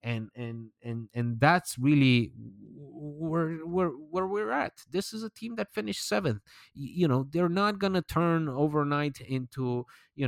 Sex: male